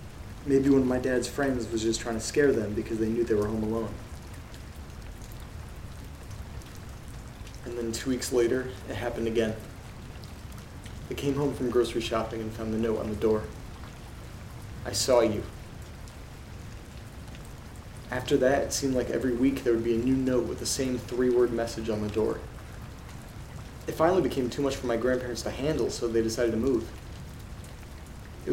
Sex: male